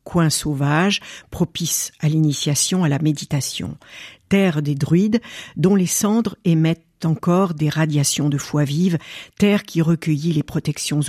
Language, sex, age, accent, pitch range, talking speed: French, female, 60-79, French, 145-190 Hz, 140 wpm